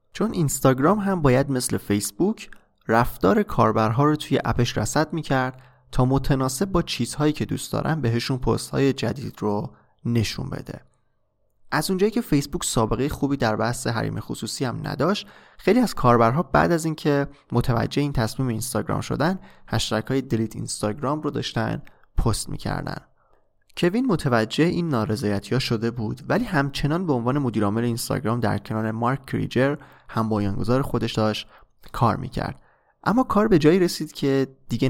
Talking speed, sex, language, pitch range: 150 wpm, male, Persian, 110-145 Hz